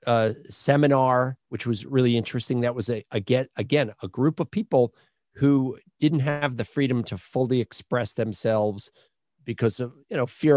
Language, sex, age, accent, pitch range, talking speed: English, male, 40-59, American, 110-140 Hz, 170 wpm